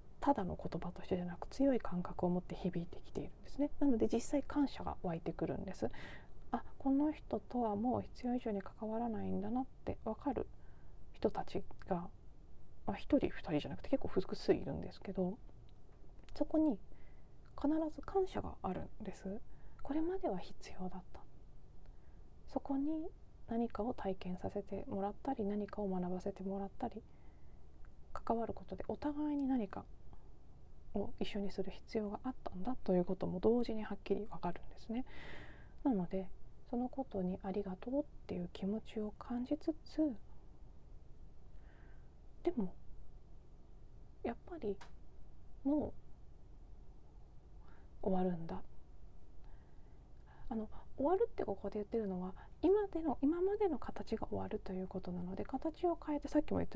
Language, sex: Japanese, female